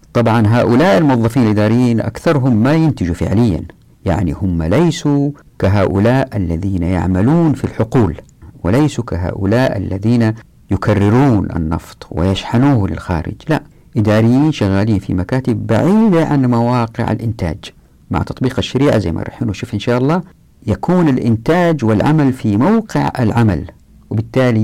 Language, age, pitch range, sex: Arabic, 50-69, 95-125 Hz, female